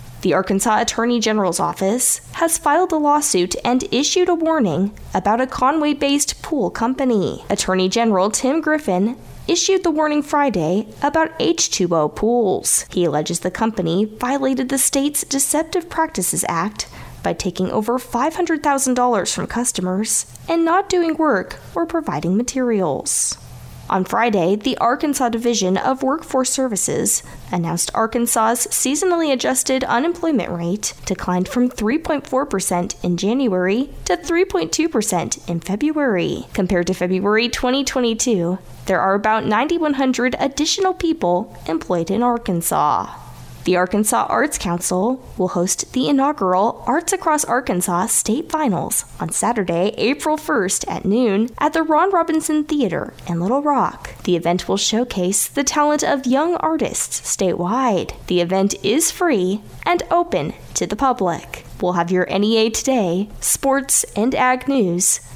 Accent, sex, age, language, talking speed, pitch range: American, female, 10-29, English, 130 wpm, 185-290 Hz